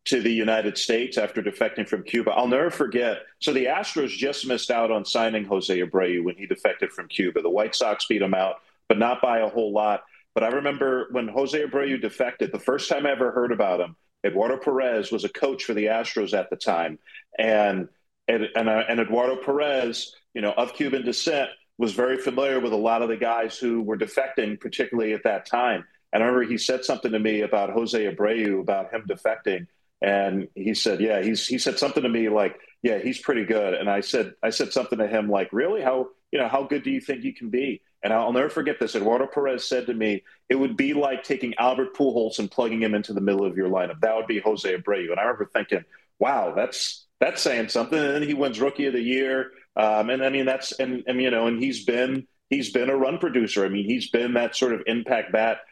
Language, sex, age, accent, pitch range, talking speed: English, male, 40-59, American, 110-130 Hz, 230 wpm